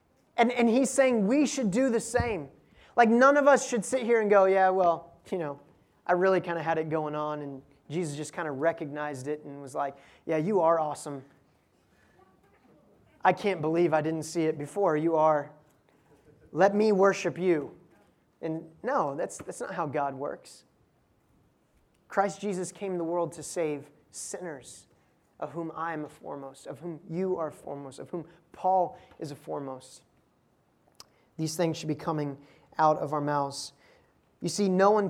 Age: 30-49